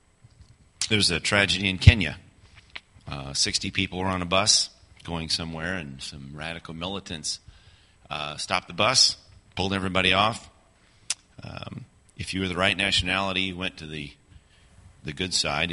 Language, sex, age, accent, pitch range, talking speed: English, male, 40-59, American, 80-100 Hz, 155 wpm